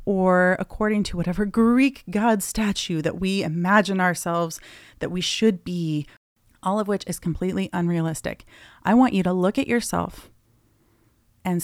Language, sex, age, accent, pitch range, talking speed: English, female, 30-49, American, 165-200 Hz, 150 wpm